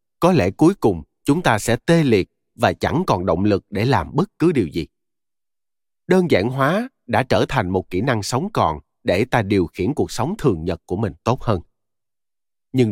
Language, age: Vietnamese, 30-49